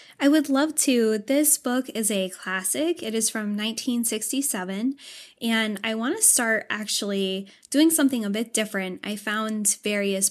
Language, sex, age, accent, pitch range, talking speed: English, female, 10-29, American, 195-245 Hz, 155 wpm